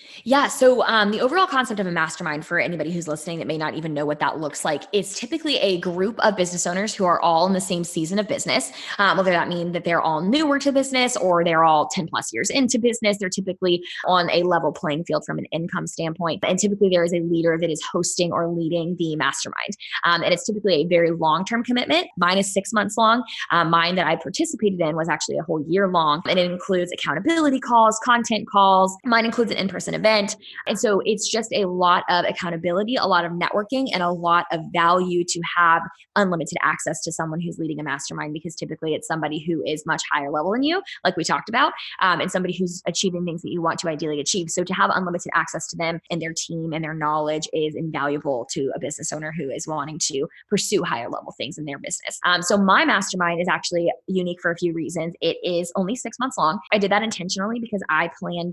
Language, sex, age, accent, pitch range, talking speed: English, female, 20-39, American, 165-200 Hz, 230 wpm